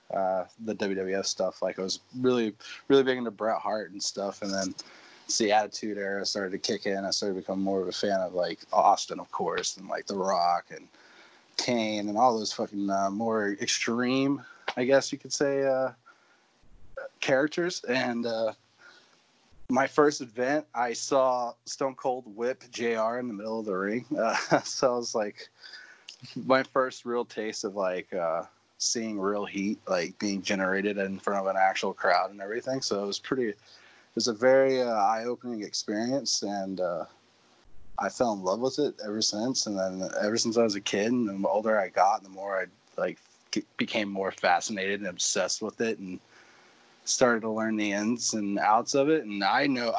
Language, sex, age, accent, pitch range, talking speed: English, male, 20-39, American, 100-125 Hz, 190 wpm